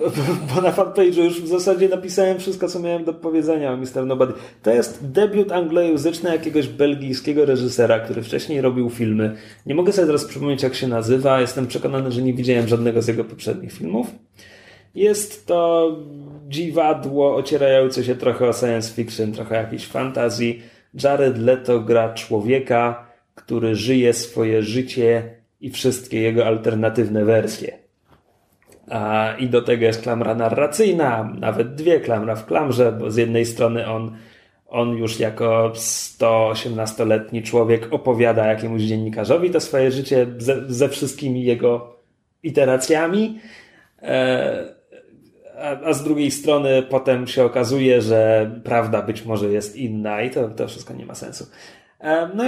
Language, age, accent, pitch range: Polish, 30-49, native, 115-150 Hz